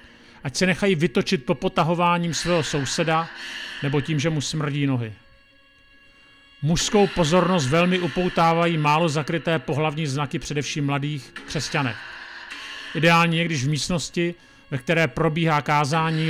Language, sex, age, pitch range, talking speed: Czech, male, 40-59, 150-180 Hz, 120 wpm